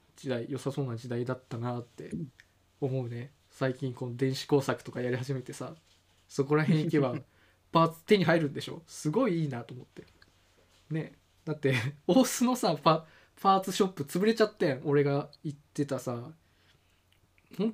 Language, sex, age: Japanese, male, 20-39